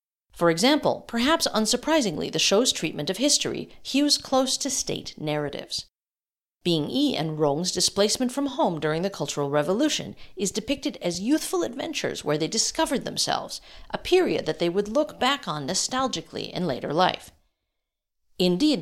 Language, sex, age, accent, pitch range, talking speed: English, female, 50-69, American, 170-280 Hz, 150 wpm